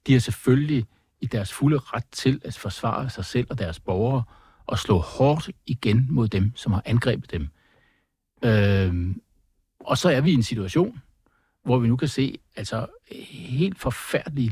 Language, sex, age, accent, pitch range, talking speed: Danish, male, 60-79, native, 105-135 Hz, 170 wpm